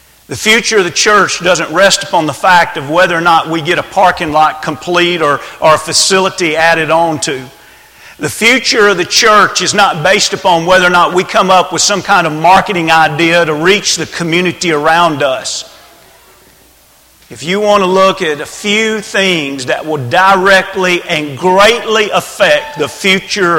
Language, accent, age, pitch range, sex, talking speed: English, American, 40-59, 155-195 Hz, male, 180 wpm